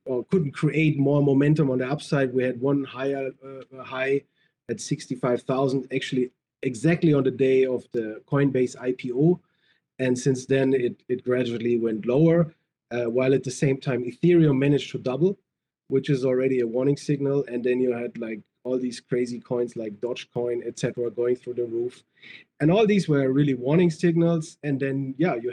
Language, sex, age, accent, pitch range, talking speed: English, male, 30-49, German, 125-150 Hz, 180 wpm